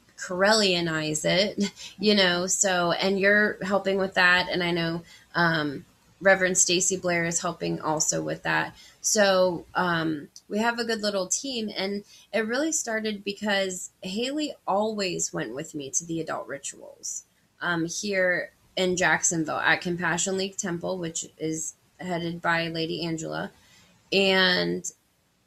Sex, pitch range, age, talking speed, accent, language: female, 175-210 Hz, 20-39, 140 wpm, American, English